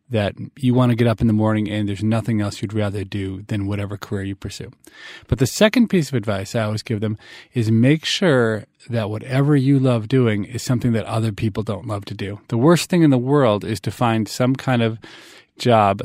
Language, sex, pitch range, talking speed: English, male, 100-125 Hz, 230 wpm